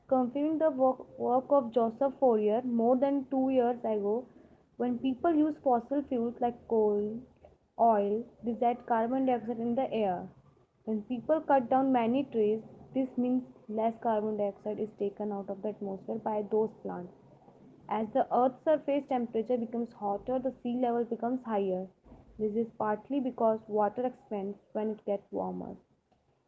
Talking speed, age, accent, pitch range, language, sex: 155 wpm, 20-39, Indian, 215-255 Hz, English, female